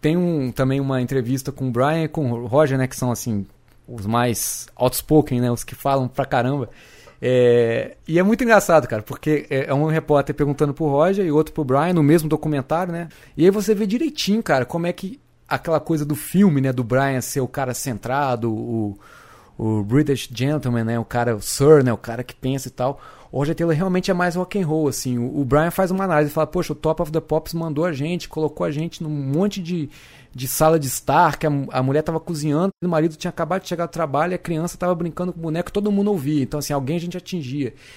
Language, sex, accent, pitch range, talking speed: Portuguese, male, Brazilian, 135-175 Hz, 230 wpm